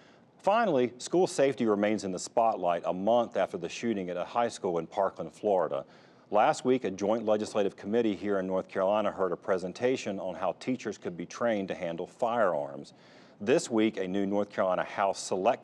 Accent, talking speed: American, 190 wpm